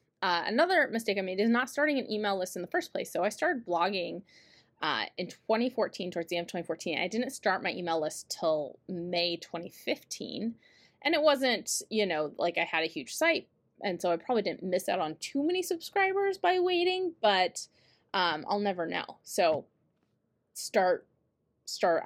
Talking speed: 185 wpm